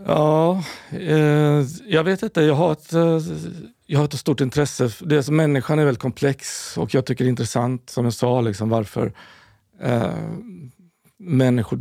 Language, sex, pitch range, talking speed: Swedish, male, 115-140 Hz, 170 wpm